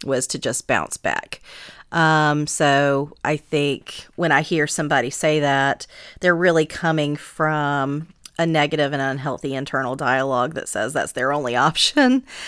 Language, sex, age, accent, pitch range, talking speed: English, female, 40-59, American, 145-165 Hz, 150 wpm